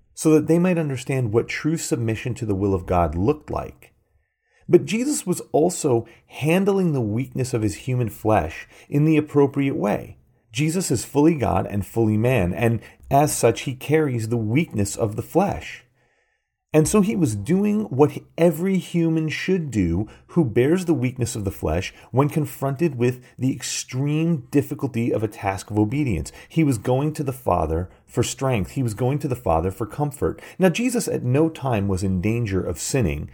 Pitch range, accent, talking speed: 100-150 Hz, American, 180 wpm